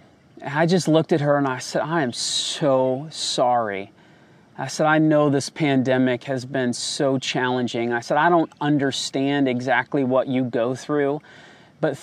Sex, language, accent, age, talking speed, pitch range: male, English, American, 30-49, 165 wpm, 120-150 Hz